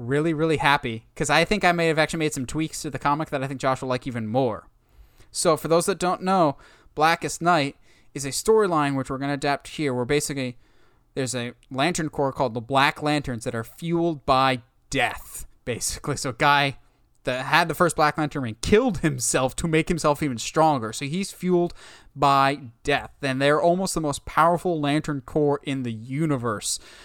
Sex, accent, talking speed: male, American, 200 wpm